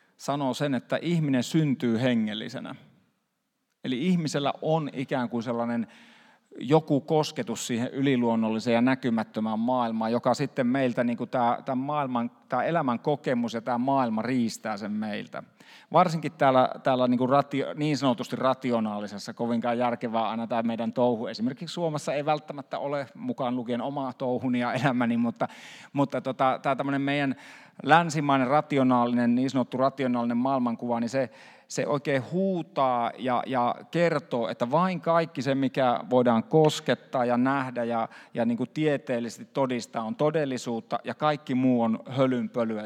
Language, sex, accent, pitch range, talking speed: Finnish, male, native, 120-145 Hz, 135 wpm